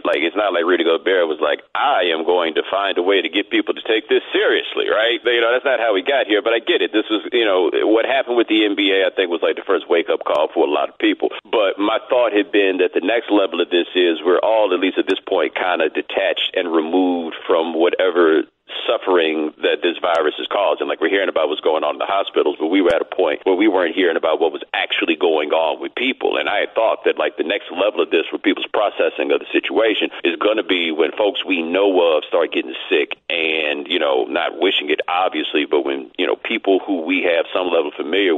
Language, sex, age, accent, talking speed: English, male, 40-59, American, 255 wpm